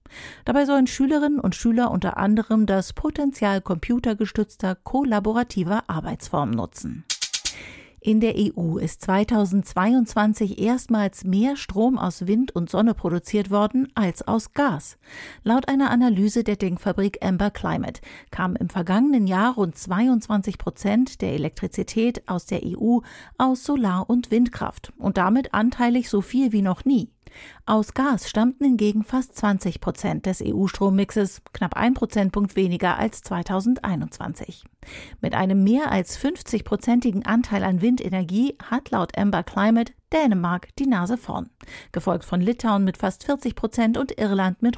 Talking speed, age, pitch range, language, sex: 135 wpm, 50-69, 195-245 Hz, German, female